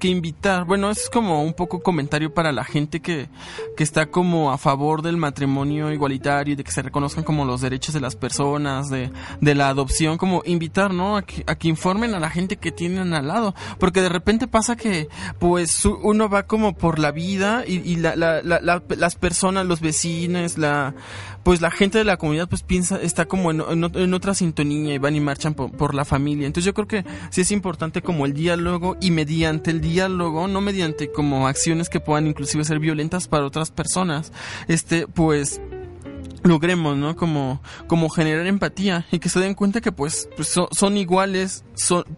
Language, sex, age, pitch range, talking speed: Spanish, male, 20-39, 145-180 Hz, 200 wpm